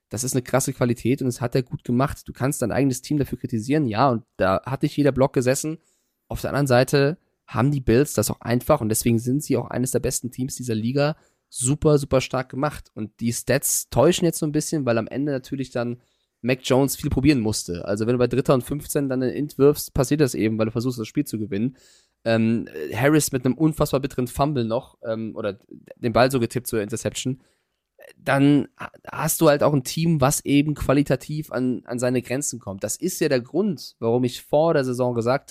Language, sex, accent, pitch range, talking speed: German, male, German, 115-140 Hz, 225 wpm